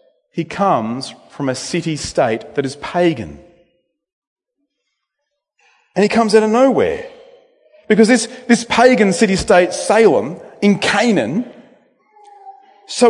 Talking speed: 105 wpm